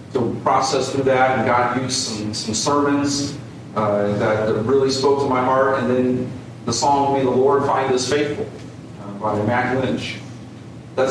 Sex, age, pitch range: male, 40-59, 115-130 Hz